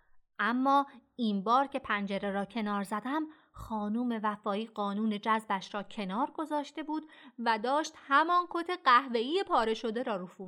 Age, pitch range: 30-49, 215-285 Hz